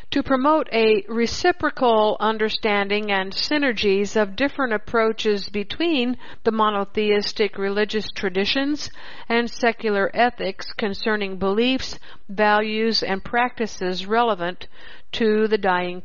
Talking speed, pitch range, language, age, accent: 100 wpm, 200-235 Hz, English, 60-79, American